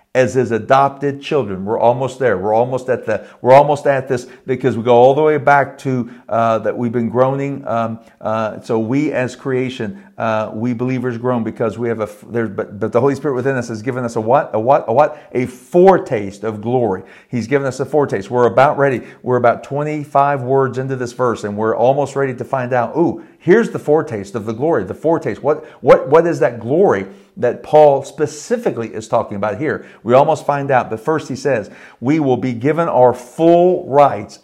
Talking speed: 215 wpm